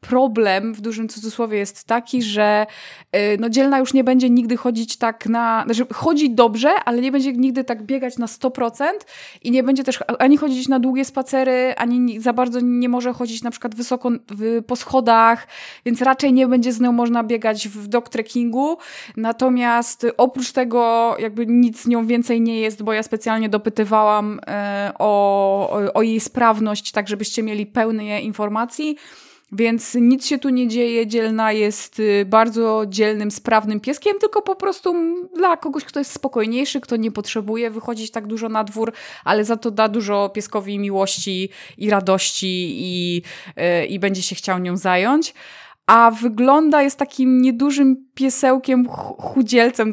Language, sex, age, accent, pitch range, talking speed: Polish, female, 20-39, native, 215-260 Hz, 160 wpm